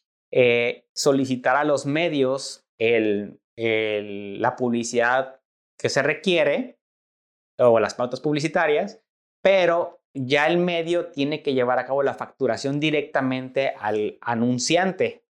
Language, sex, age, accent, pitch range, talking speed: Spanish, male, 30-49, Mexican, 115-145 Hz, 110 wpm